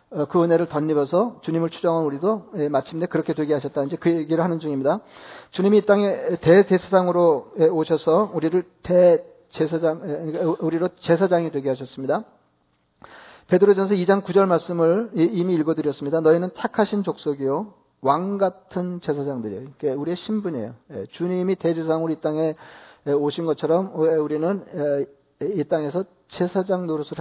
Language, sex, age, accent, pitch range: Korean, male, 40-59, native, 150-185 Hz